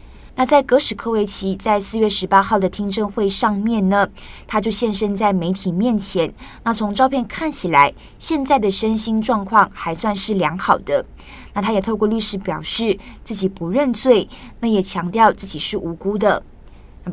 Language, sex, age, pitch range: Chinese, female, 20-39, 185-220 Hz